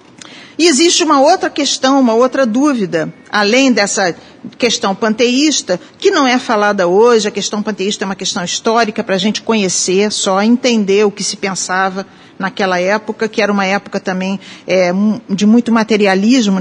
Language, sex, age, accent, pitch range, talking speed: Portuguese, female, 50-69, Brazilian, 195-245 Hz, 160 wpm